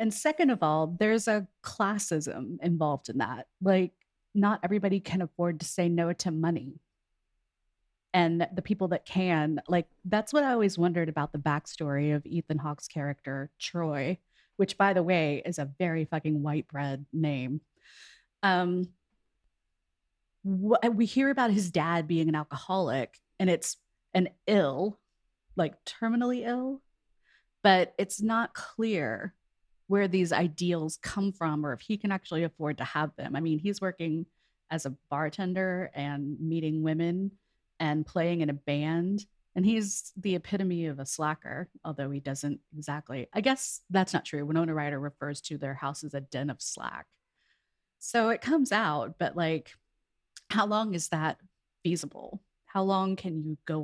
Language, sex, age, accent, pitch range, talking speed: English, female, 30-49, American, 145-195 Hz, 160 wpm